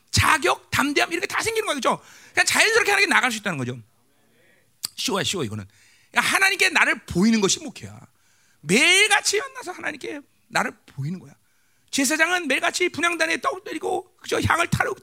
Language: Korean